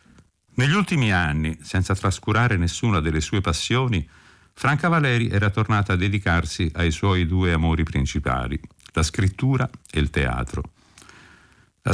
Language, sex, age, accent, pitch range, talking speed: Italian, male, 50-69, native, 80-110 Hz, 130 wpm